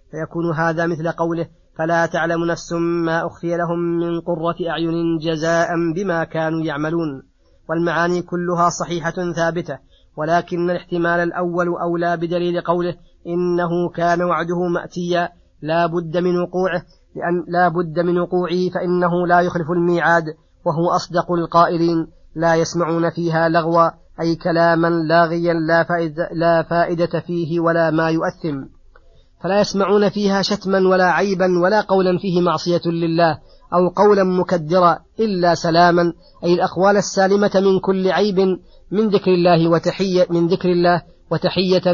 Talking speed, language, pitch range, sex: 130 wpm, Arabic, 170-180 Hz, female